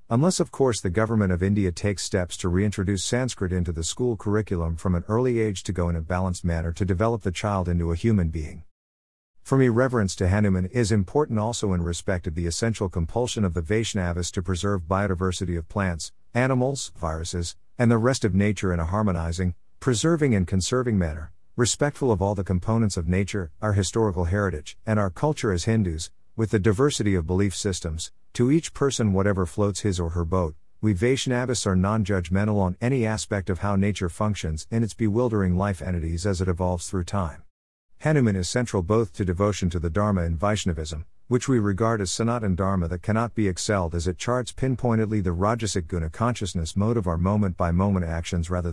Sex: male